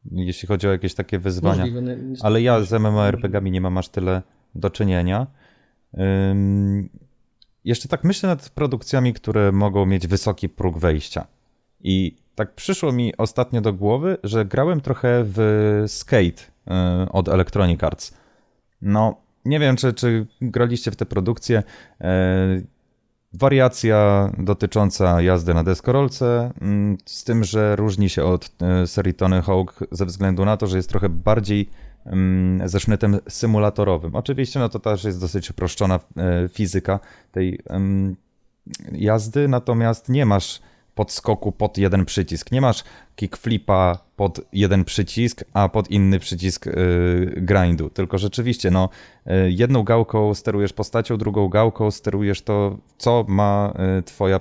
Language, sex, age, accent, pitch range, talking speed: Polish, male, 30-49, native, 95-115 Hz, 130 wpm